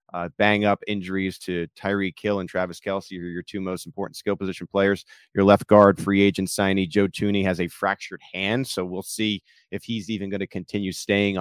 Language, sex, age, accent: English, male, 30-49, American